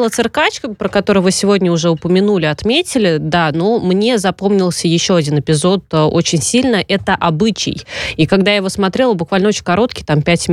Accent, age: native, 20-39